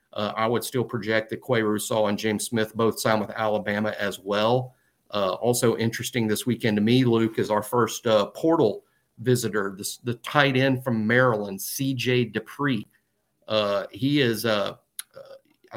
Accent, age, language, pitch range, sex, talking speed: American, 50-69, English, 110-125 Hz, male, 160 wpm